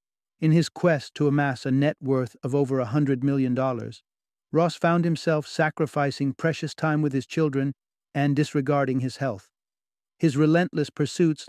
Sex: male